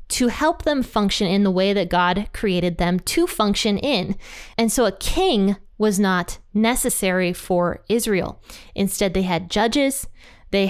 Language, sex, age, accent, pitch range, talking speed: English, female, 20-39, American, 190-250 Hz, 155 wpm